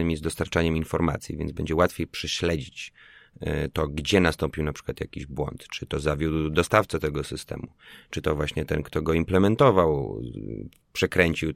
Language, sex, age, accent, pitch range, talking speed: Polish, male, 30-49, native, 80-90 Hz, 145 wpm